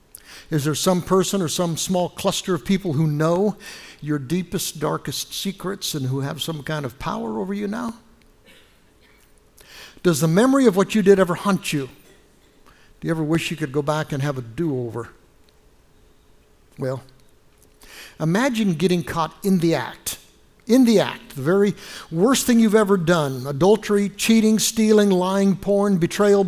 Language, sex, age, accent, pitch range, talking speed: English, male, 60-79, American, 145-195 Hz, 160 wpm